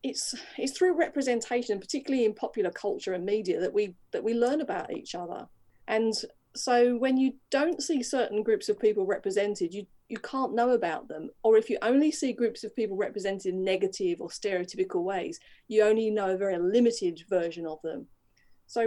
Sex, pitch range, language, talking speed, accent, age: female, 190-260 Hz, English, 190 wpm, British, 40-59